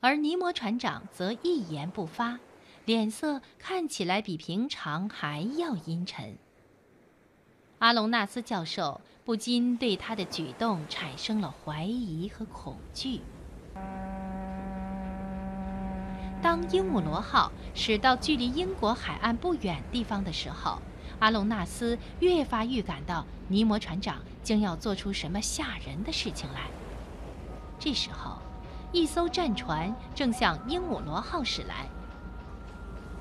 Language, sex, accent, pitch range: Chinese, female, native, 190-255 Hz